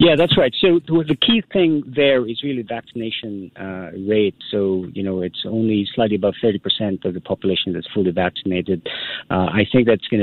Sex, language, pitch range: male, English, 90-110 Hz